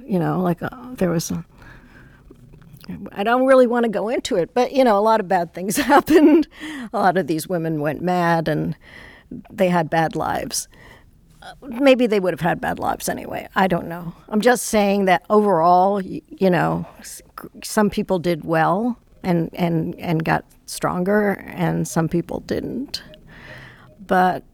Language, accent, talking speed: English, American, 165 wpm